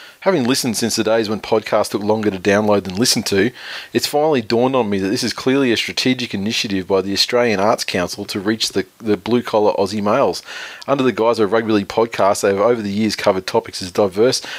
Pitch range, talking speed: 100-120 Hz, 220 wpm